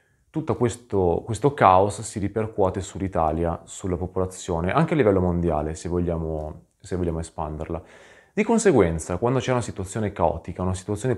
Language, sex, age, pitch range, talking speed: Italian, male, 30-49, 85-115 Hz, 140 wpm